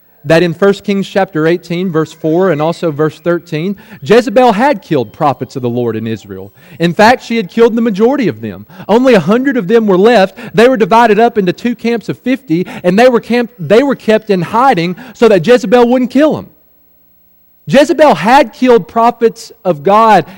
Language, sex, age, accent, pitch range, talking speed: English, male, 40-59, American, 150-225 Hz, 190 wpm